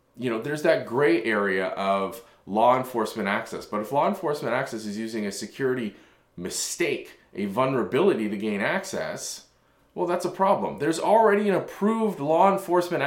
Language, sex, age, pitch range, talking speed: English, male, 20-39, 110-160 Hz, 160 wpm